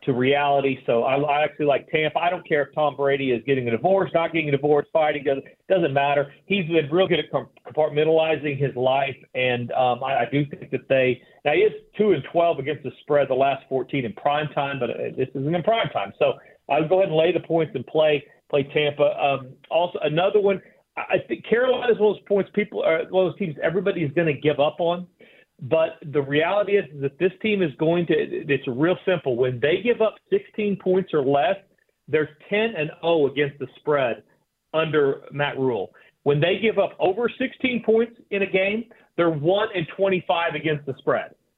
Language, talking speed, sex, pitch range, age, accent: English, 215 wpm, male, 145-200 Hz, 40-59, American